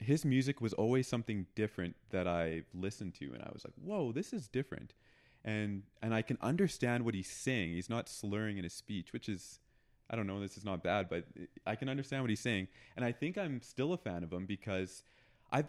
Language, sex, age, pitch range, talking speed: English, male, 20-39, 95-125 Hz, 225 wpm